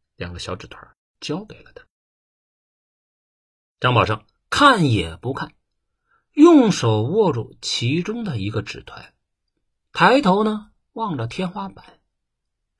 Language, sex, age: Chinese, male, 50-69